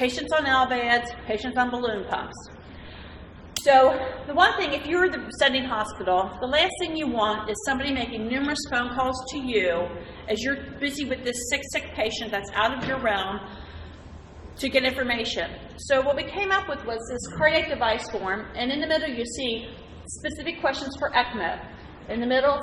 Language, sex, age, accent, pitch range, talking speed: English, female, 40-59, American, 215-275 Hz, 185 wpm